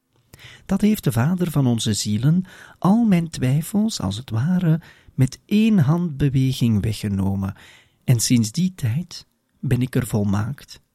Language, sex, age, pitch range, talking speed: Dutch, male, 40-59, 115-165 Hz, 135 wpm